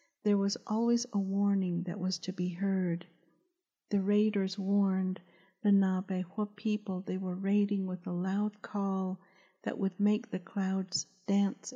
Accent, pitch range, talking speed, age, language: American, 185-205 Hz, 150 wpm, 50-69, English